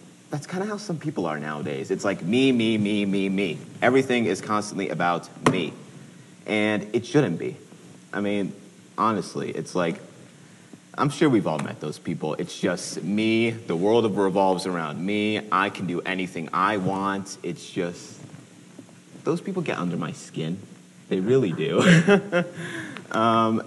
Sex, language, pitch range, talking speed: male, English, 90-125 Hz, 155 wpm